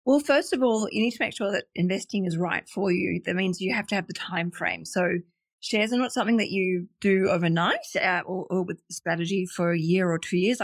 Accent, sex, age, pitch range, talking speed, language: Australian, female, 30-49, 180-215 Hz, 235 wpm, English